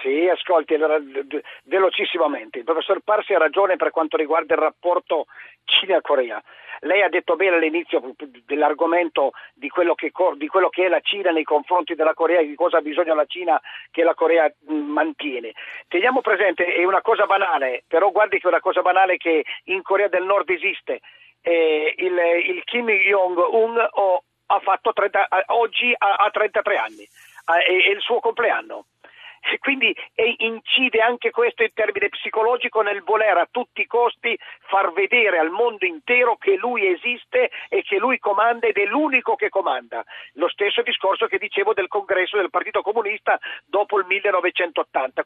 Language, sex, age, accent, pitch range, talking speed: Italian, male, 50-69, native, 170-240 Hz, 155 wpm